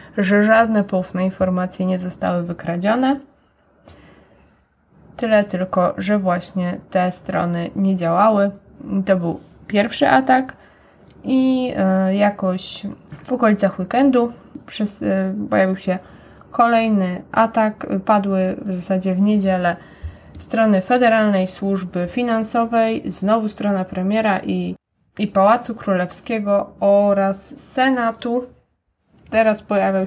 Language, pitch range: Polish, 185-220 Hz